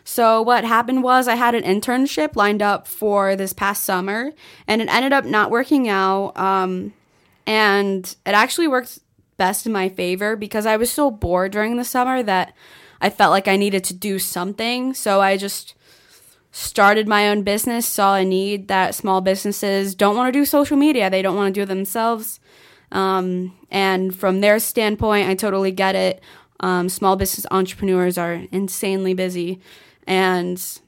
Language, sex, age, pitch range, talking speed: English, female, 10-29, 190-220 Hz, 175 wpm